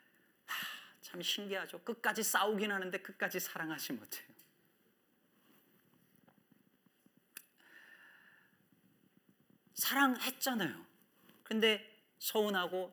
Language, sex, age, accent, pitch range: Korean, male, 40-59, native, 155-225 Hz